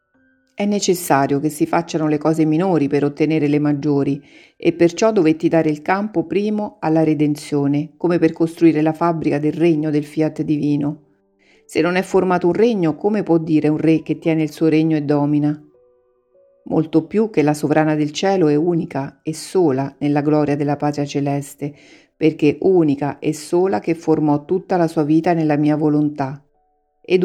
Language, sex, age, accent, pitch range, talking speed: Italian, female, 40-59, native, 150-175 Hz, 175 wpm